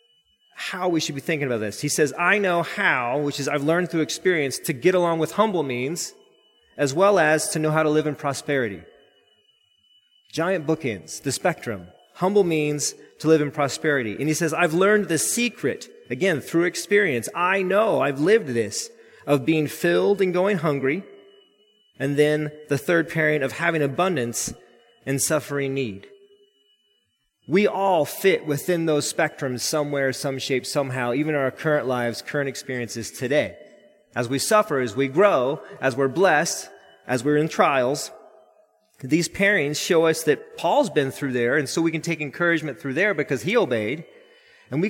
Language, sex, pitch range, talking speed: English, male, 140-195 Hz, 170 wpm